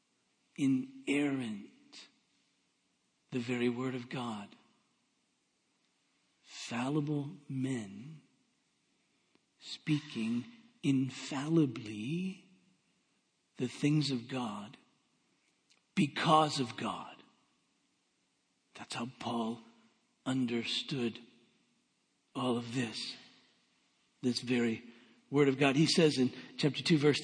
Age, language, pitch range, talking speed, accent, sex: 50-69, English, 125-155 Hz, 75 wpm, American, male